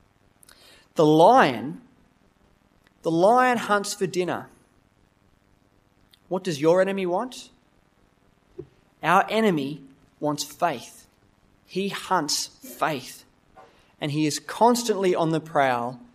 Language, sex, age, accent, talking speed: English, male, 30-49, Australian, 95 wpm